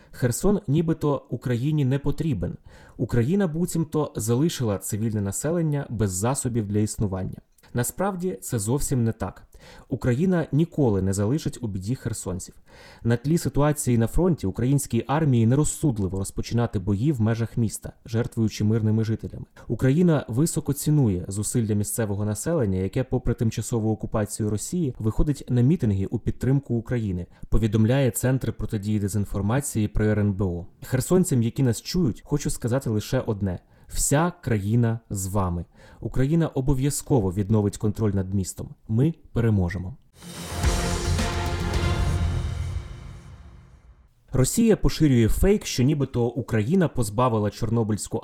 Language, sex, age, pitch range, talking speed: Ukrainian, male, 20-39, 105-140 Hz, 115 wpm